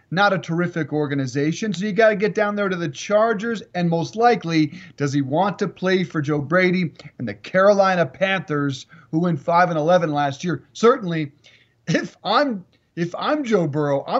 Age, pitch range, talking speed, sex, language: 30-49, 150-185 Hz, 185 wpm, male, English